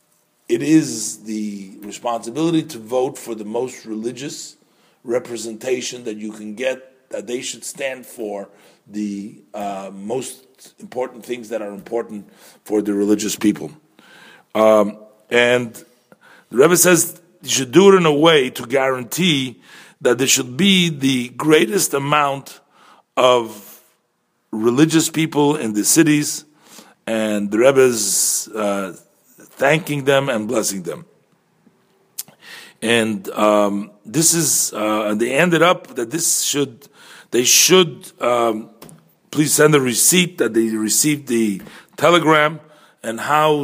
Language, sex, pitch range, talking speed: English, male, 105-150 Hz, 130 wpm